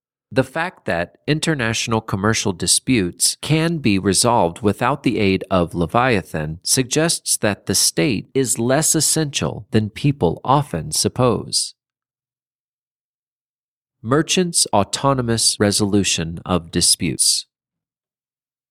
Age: 40-59